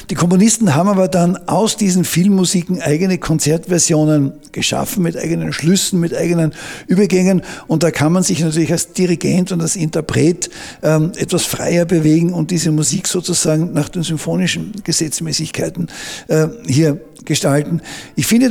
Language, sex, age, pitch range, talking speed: German, male, 60-79, 155-180 Hz, 140 wpm